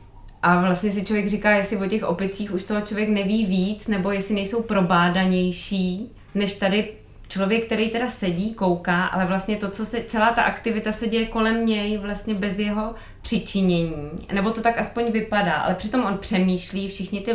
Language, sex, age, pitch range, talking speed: Czech, female, 20-39, 175-205 Hz, 180 wpm